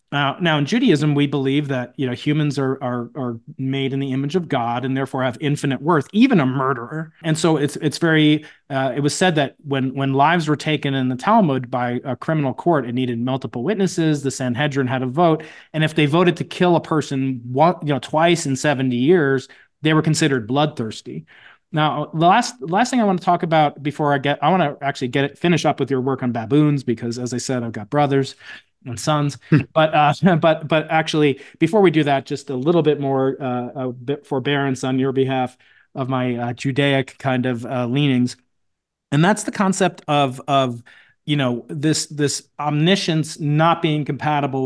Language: English